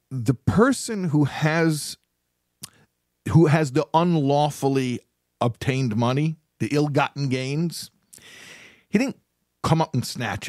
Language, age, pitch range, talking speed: English, 50-69, 110-155 Hz, 110 wpm